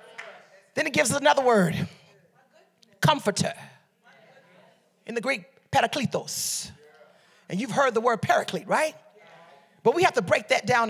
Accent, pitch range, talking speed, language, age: American, 190-285 Hz, 140 wpm, English, 40-59